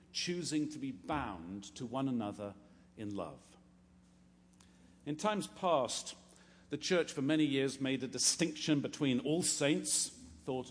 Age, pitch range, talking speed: 50-69, 120-150 Hz, 135 wpm